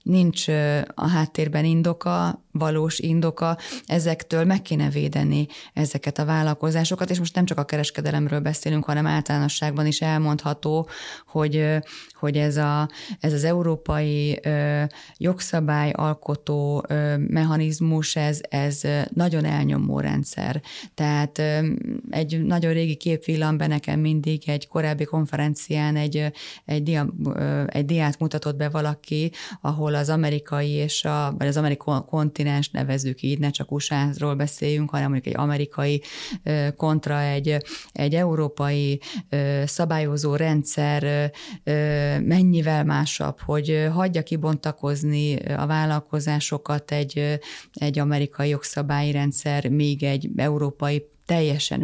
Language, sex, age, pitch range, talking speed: Hungarian, female, 30-49, 145-155 Hz, 110 wpm